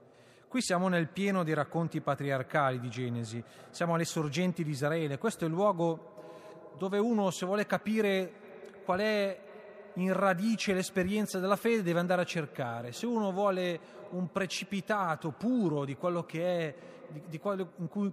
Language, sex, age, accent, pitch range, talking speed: Italian, male, 30-49, native, 145-190 Hz, 160 wpm